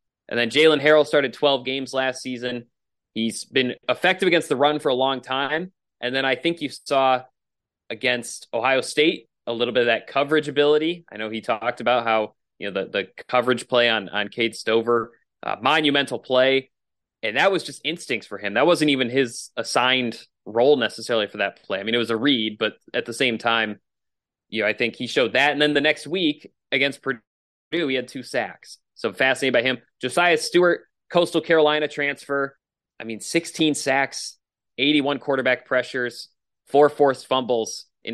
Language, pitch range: English, 125-150 Hz